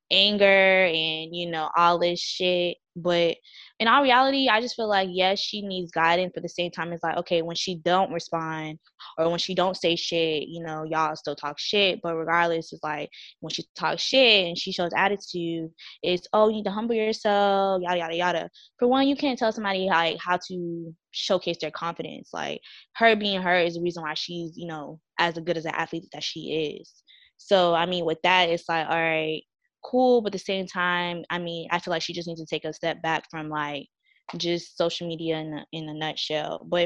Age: 20-39